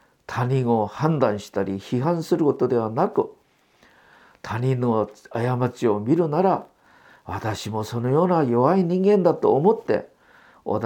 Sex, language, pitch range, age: male, Japanese, 110-180 Hz, 50-69